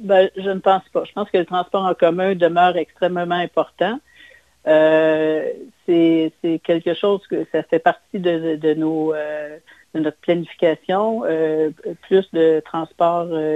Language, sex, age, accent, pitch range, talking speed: French, female, 60-79, Canadian, 160-185 Hz, 150 wpm